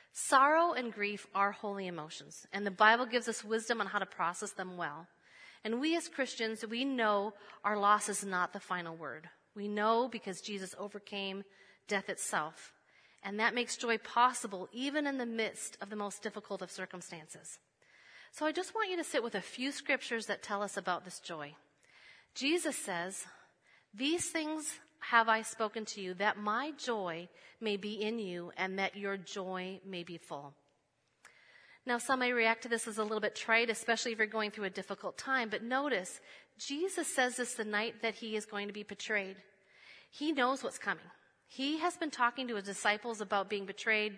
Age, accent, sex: 40-59, American, female